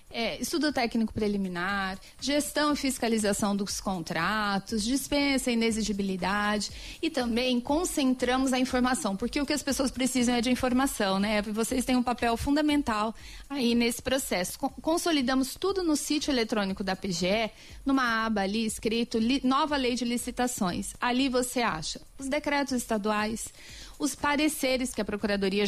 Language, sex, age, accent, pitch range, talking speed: Portuguese, female, 30-49, Brazilian, 215-275 Hz, 145 wpm